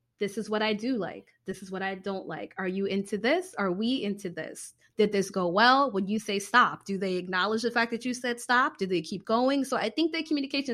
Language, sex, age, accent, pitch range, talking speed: English, female, 20-39, American, 195-265 Hz, 255 wpm